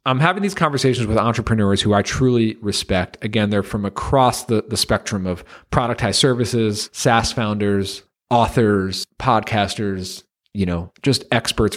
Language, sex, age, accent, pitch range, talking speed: English, male, 40-59, American, 95-120 Hz, 150 wpm